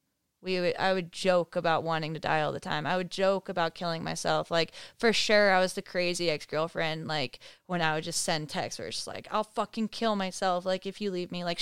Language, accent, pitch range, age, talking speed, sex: English, American, 175-215 Hz, 20-39, 245 wpm, female